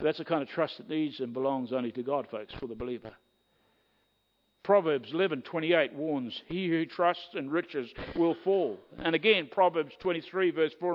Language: English